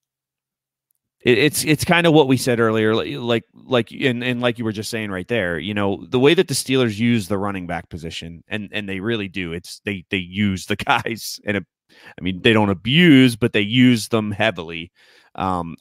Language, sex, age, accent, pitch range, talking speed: English, male, 30-49, American, 95-125 Hz, 205 wpm